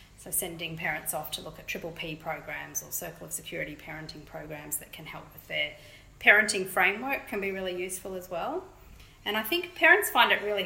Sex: female